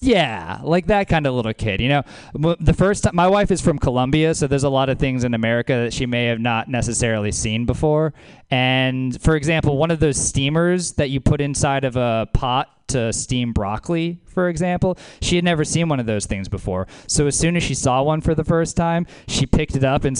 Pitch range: 105-155 Hz